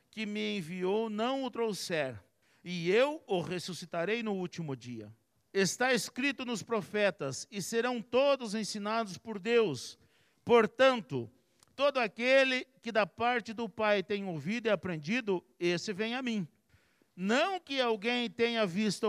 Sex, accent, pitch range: male, Brazilian, 170-240 Hz